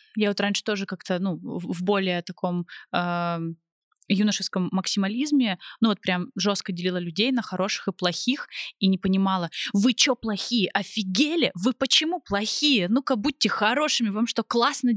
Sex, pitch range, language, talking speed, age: female, 180-225 Hz, Russian, 150 wpm, 20-39